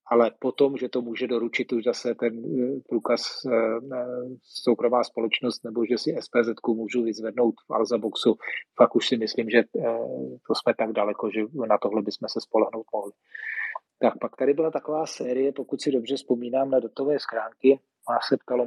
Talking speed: 175 wpm